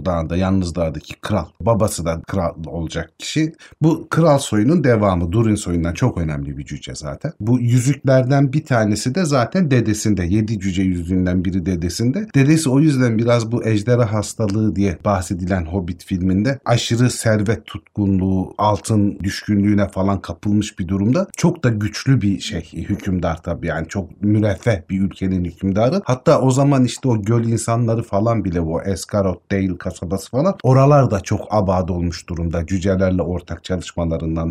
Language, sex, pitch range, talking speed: Turkish, male, 95-125 Hz, 155 wpm